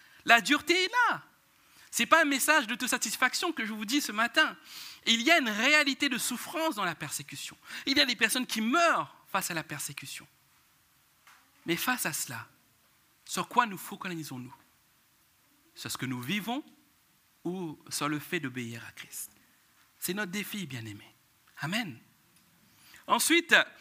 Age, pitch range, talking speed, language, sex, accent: 60-79, 190-265 Hz, 165 wpm, French, male, French